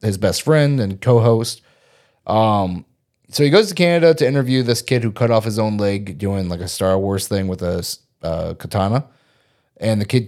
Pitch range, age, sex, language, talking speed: 95-125 Hz, 30-49, male, English, 200 wpm